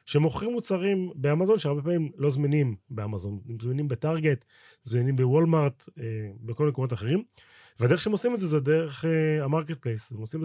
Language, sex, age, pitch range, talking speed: Hebrew, male, 30-49, 120-160 Hz, 155 wpm